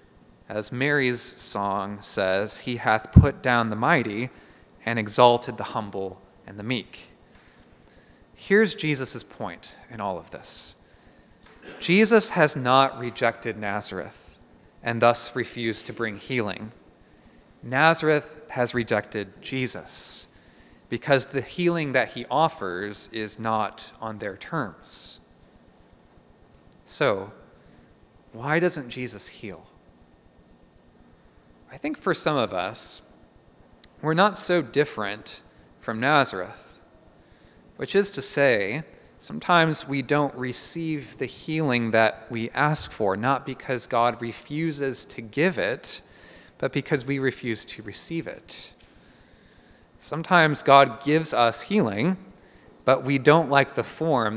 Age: 30-49